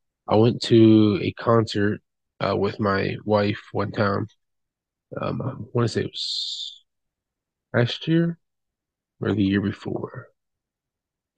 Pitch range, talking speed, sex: 100-120 Hz, 130 wpm, male